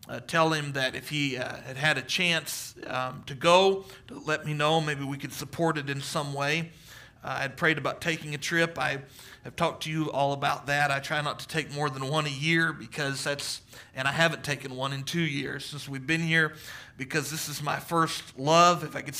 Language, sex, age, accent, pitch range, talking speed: English, male, 40-59, American, 145-165 Hz, 235 wpm